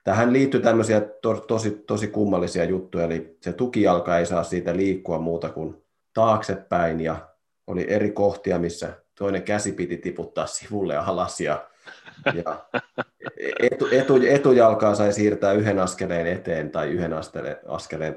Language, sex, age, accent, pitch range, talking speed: Finnish, male, 30-49, native, 85-105 Hz, 140 wpm